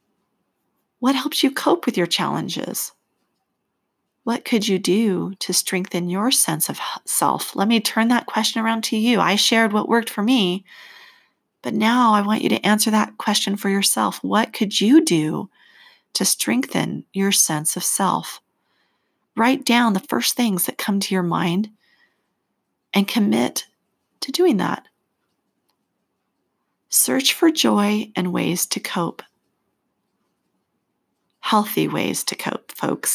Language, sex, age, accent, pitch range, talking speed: English, female, 40-59, American, 175-235 Hz, 145 wpm